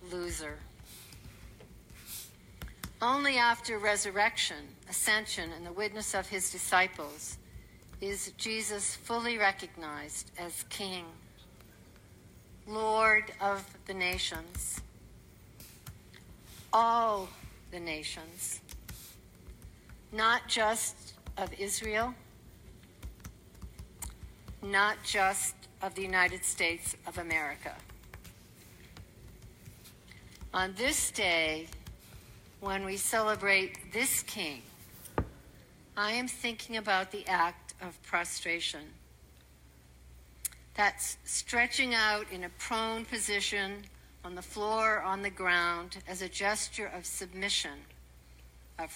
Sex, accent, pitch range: female, American, 170-220 Hz